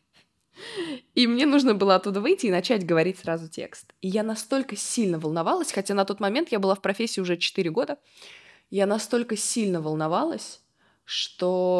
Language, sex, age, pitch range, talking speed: Russian, female, 20-39, 170-225 Hz, 165 wpm